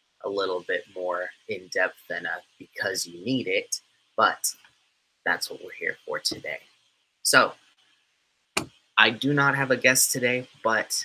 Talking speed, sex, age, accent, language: 145 wpm, male, 30-49, American, English